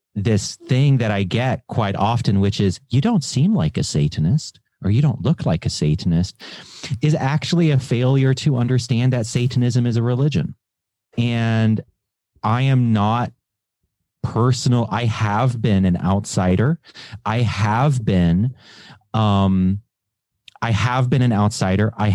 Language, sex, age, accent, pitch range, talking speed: English, male, 30-49, American, 95-125 Hz, 145 wpm